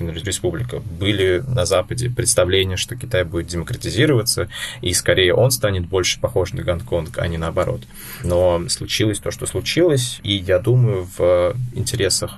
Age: 20-39